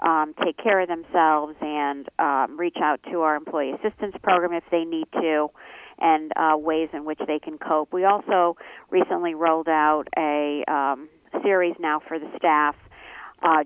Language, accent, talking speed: English, American, 170 wpm